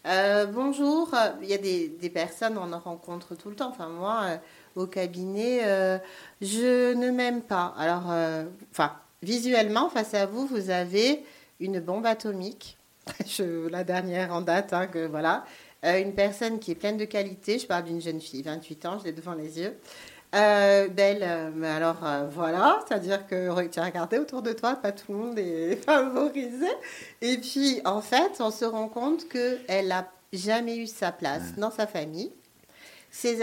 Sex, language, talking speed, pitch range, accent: female, French, 190 wpm, 170-225 Hz, French